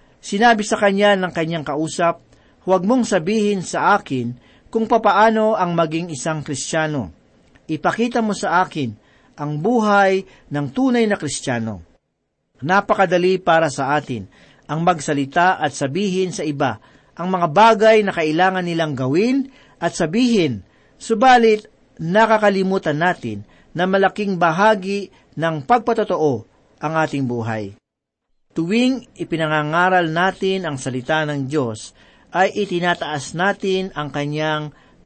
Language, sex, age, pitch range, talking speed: Filipino, male, 50-69, 145-205 Hz, 120 wpm